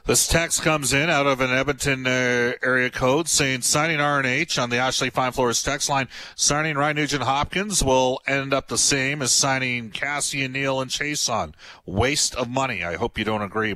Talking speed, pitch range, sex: 200 wpm, 100-130 Hz, male